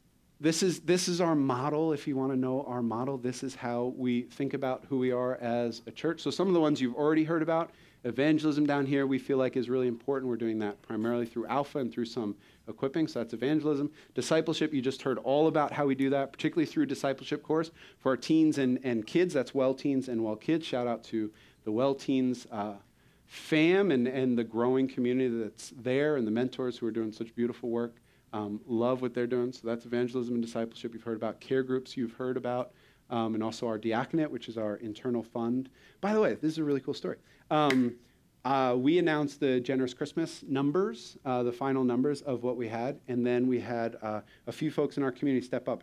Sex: male